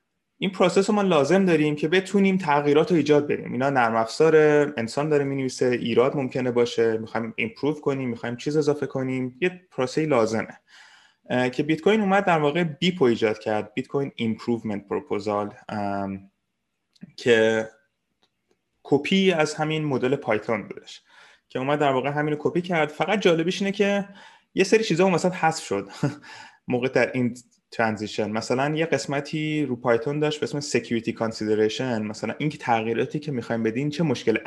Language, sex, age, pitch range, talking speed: Persian, male, 20-39, 115-160 Hz, 155 wpm